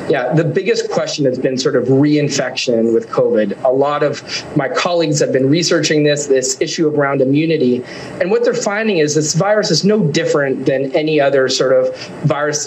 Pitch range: 135-165 Hz